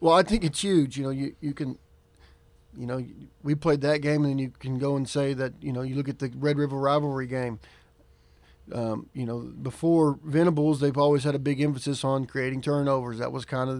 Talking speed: 225 wpm